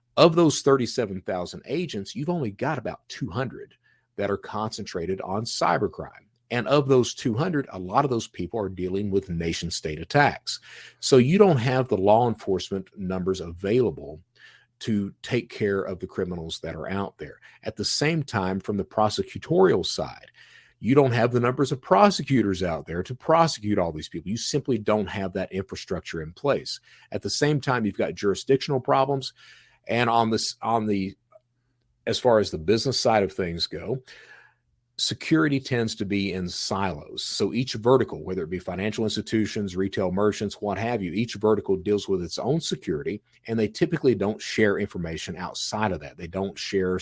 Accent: American